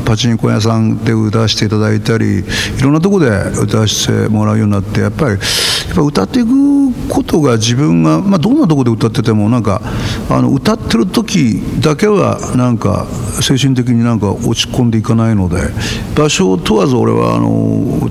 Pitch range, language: 105-130 Hz, Japanese